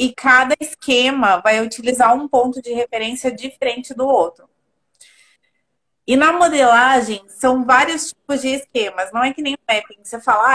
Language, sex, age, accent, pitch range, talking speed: Portuguese, female, 30-49, Brazilian, 225-275 Hz, 160 wpm